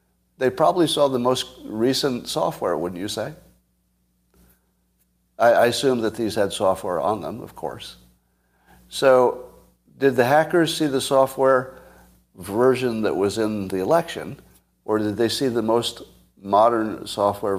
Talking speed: 145 wpm